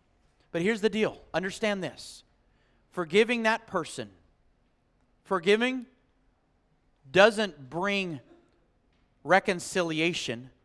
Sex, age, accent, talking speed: male, 40-59, American, 75 wpm